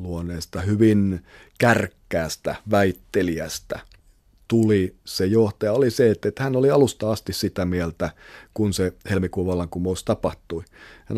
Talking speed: 120 wpm